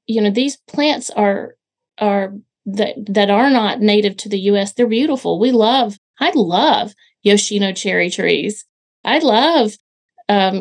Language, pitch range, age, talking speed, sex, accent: English, 200-240 Hz, 40-59, 145 wpm, female, American